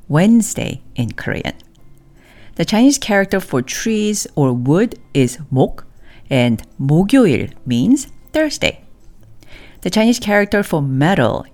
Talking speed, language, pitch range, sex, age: 110 wpm, English, 135-205 Hz, female, 50-69